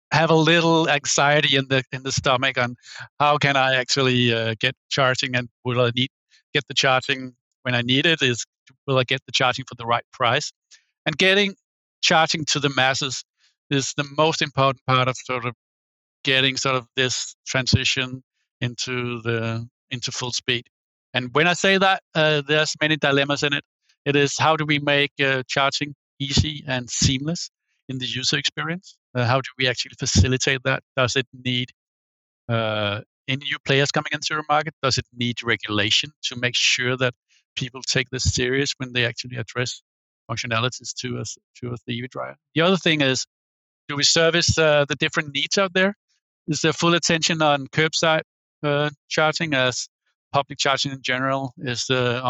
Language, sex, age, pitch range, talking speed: English, male, 50-69, 125-145 Hz, 180 wpm